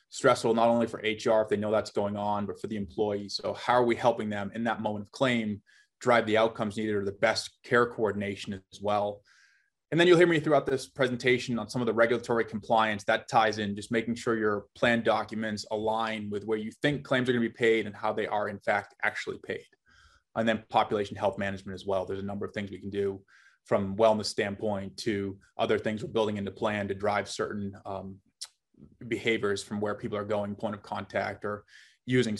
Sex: male